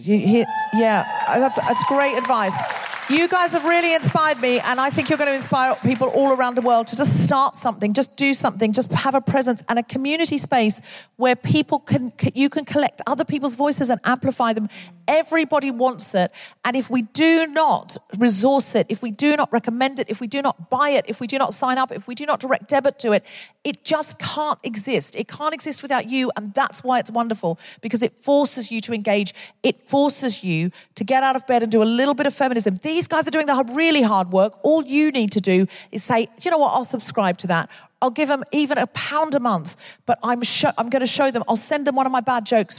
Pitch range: 215-275 Hz